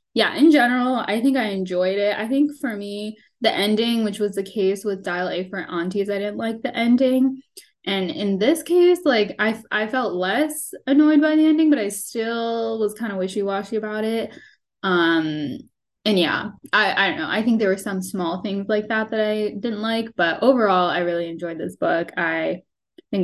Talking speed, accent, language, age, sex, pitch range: 200 wpm, American, English, 10-29, female, 185-230 Hz